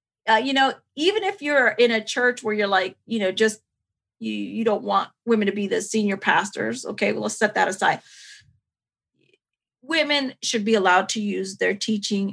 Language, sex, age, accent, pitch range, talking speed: English, female, 40-59, American, 205-245 Hz, 185 wpm